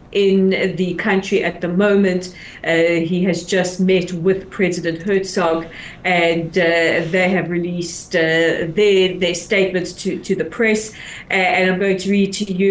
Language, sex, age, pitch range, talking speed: English, female, 40-59, 180-215 Hz, 160 wpm